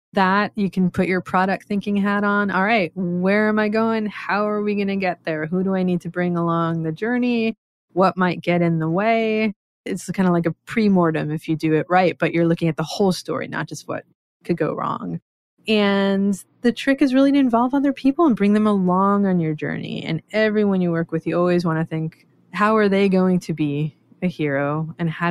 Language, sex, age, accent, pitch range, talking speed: English, female, 20-39, American, 165-205 Hz, 230 wpm